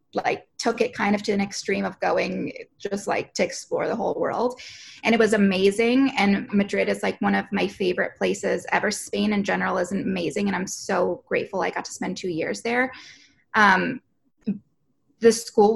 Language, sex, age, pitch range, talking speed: English, female, 20-39, 200-255 Hz, 190 wpm